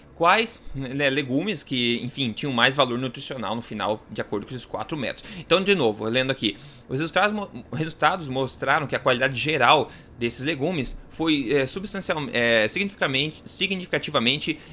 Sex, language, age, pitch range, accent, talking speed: male, Portuguese, 20-39, 130-180 Hz, Brazilian, 150 wpm